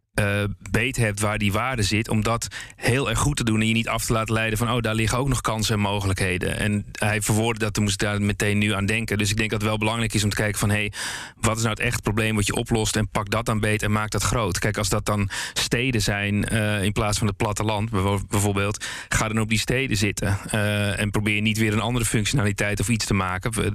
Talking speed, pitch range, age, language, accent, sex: 265 wpm, 105-115 Hz, 40-59, Dutch, Dutch, male